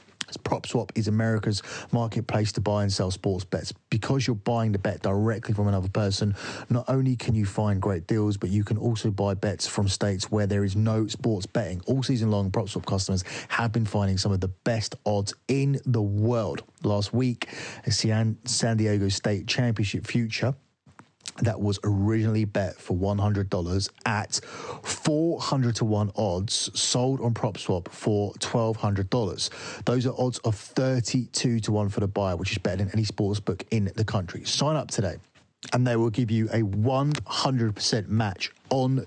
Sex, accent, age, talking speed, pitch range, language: male, British, 30-49, 170 wpm, 100-120 Hz, English